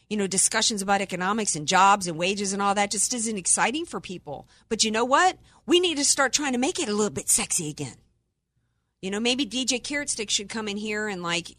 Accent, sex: American, female